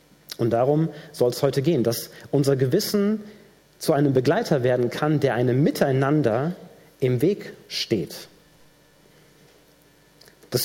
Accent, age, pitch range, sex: German, 40-59, 140-180 Hz, male